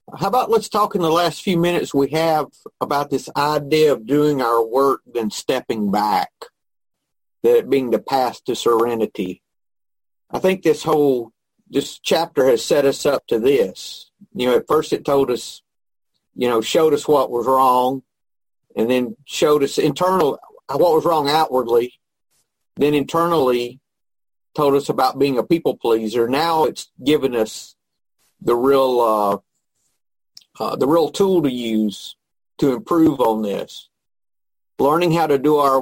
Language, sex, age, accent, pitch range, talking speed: English, male, 50-69, American, 125-175 Hz, 155 wpm